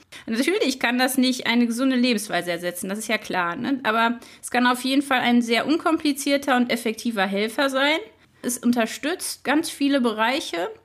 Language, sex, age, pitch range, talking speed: German, female, 30-49, 215-275 Hz, 165 wpm